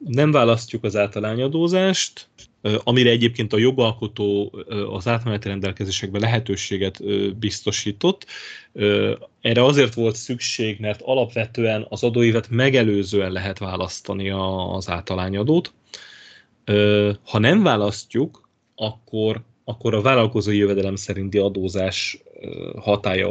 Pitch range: 95-115 Hz